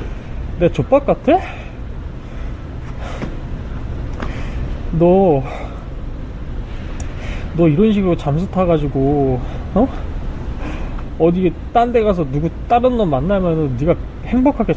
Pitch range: 115-185 Hz